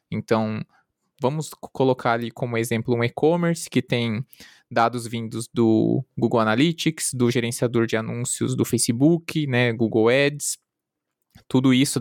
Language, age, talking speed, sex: Portuguese, 20-39, 130 wpm, male